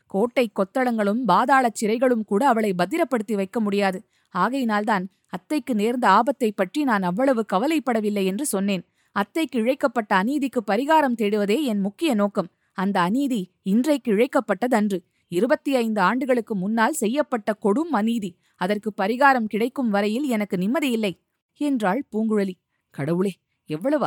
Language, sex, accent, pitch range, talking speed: Tamil, female, native, 200-270 Hz, 120 wpm